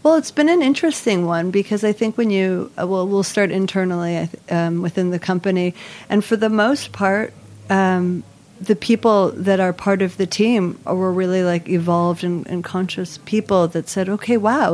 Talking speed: 185 wpm